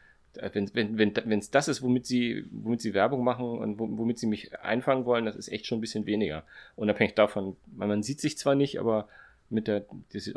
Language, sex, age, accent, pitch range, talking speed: German, male, 30-49, German, 105-125 Hz, 220 wpm